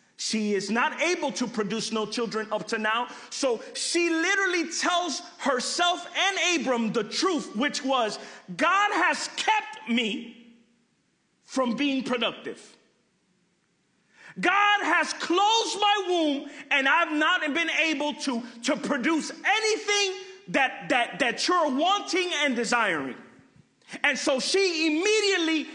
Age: 40-59